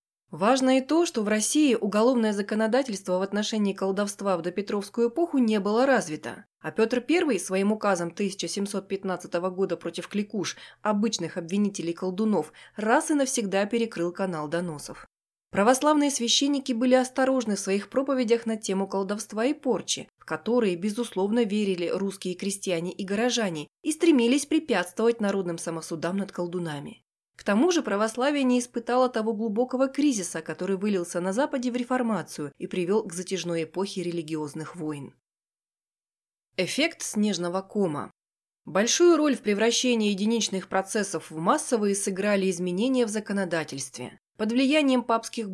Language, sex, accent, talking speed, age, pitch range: Russian, female, native, 135 wpm, 20-39, 185-240 Hz